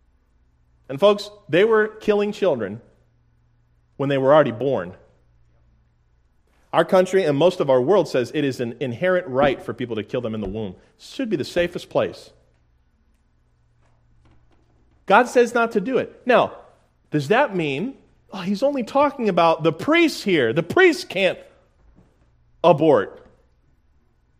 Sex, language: male, English